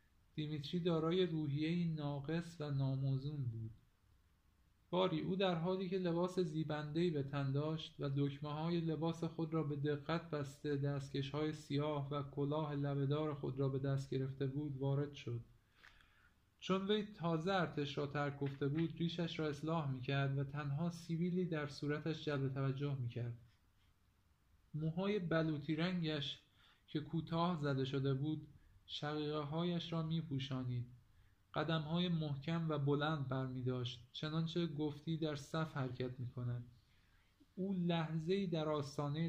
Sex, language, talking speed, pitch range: male, Persian, 135 wpm, 135-165 Hz